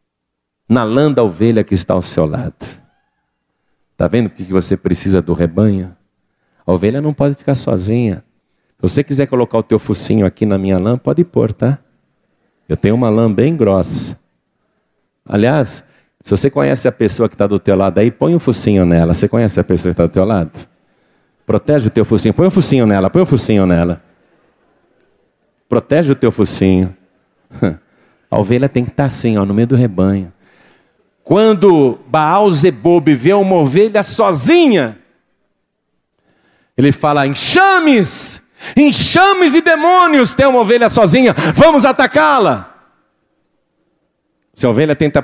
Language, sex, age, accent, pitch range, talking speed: Portuguese, male, 50-69, Brazilian, 95-150 Hz, 150 wpm